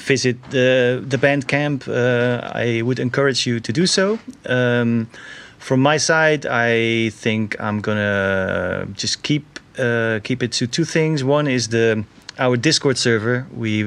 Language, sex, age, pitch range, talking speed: English, male, 30-49, 100-125 Hz, 155 wpm